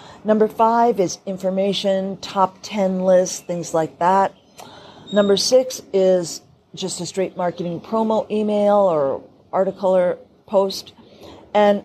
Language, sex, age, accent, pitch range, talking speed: English, female, 40-59, American, 180-215 Hz, 120 wpm